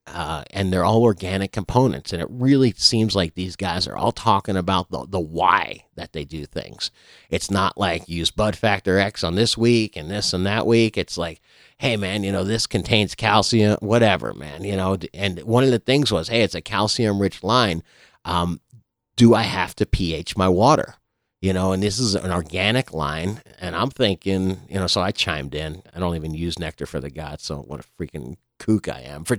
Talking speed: 215 wpm